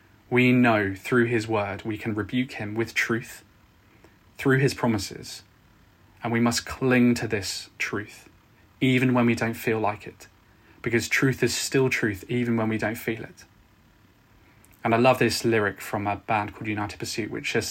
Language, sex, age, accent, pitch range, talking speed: English, male, 20-39, British, 105-120 Hz, 175 wpm